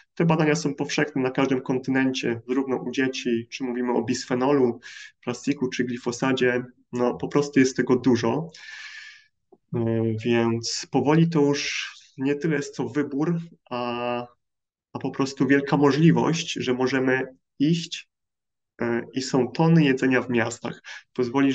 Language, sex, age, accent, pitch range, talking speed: Polish, male, 20-39, native, 125-145 Hz, 135 wpm